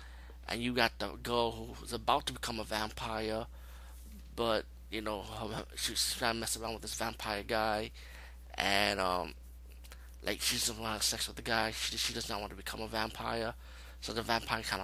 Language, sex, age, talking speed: English, male, 20-39, 185 wpm